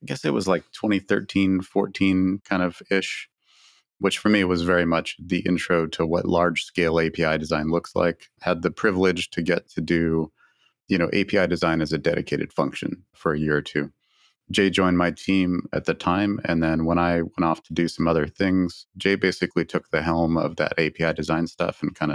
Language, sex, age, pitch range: English, male, 30-49, 80-90 Hz